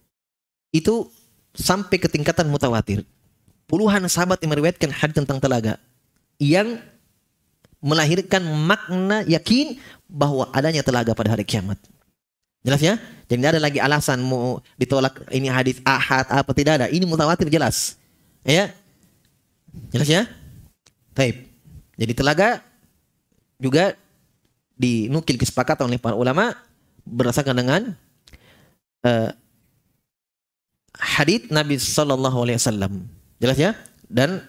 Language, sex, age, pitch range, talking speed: Indonesian, male, 30-49, 130-180 Hz, 105 wpm